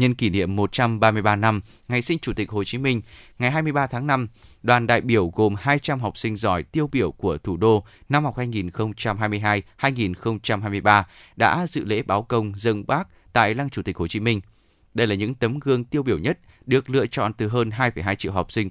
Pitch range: 100-125 Hz